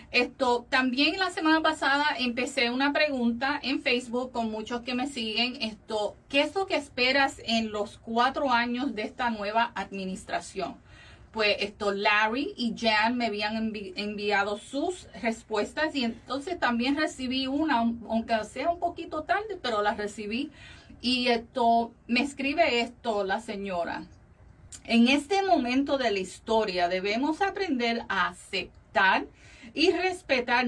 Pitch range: 215-280 Hz